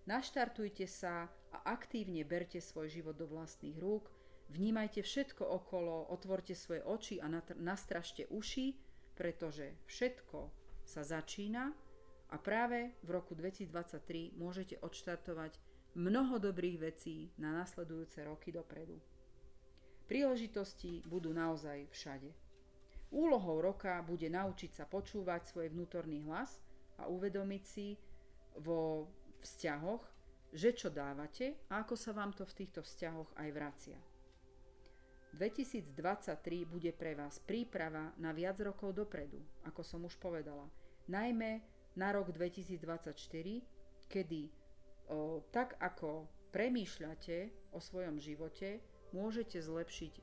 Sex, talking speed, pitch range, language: female, 115 wpm, 155-195 Hz, Slovak